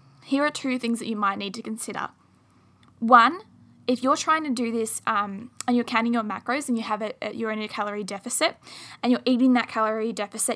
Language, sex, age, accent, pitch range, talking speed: English, female, 10-29, Australian, 210-245 Hz, 215 wpm